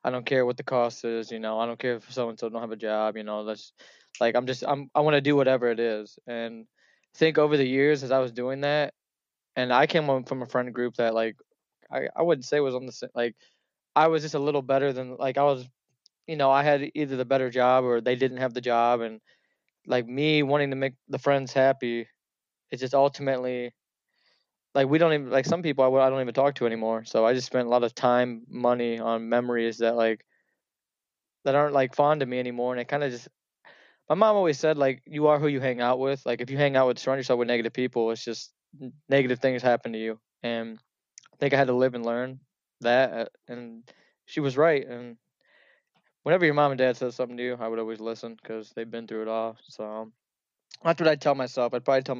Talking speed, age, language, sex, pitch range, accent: 245 wpm, 20-39, English, male, 120-140 Hz, American